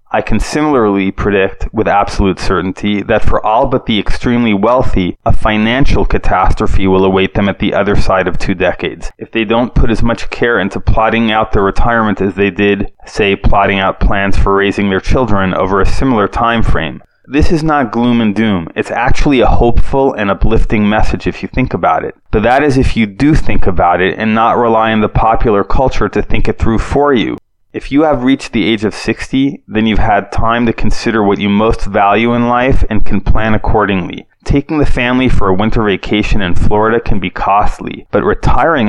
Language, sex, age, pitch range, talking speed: English, male, 20-39, 100-120 Hz, 205 wpm